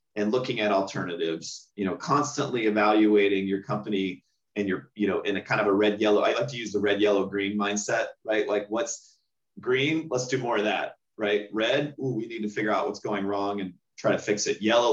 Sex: male